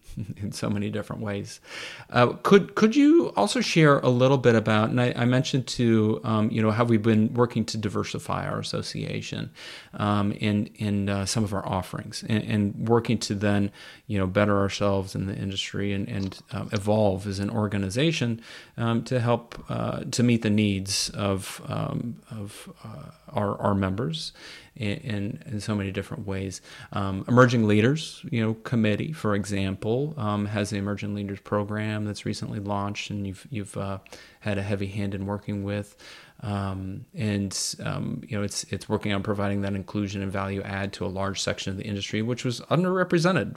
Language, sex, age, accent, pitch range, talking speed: English, male, 30-49, American, 100-120 Hz, 185 wpm